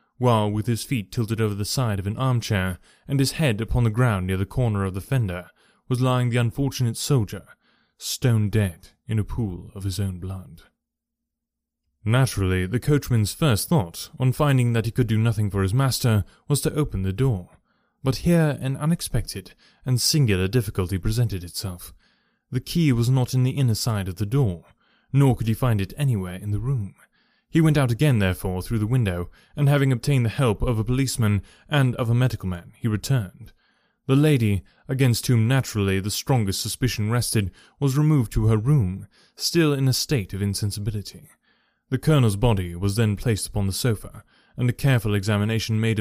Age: 20-39